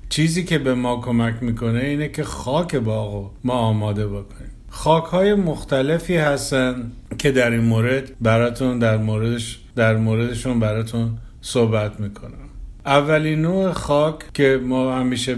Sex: male